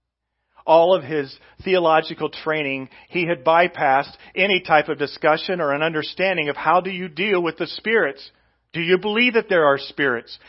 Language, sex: English, male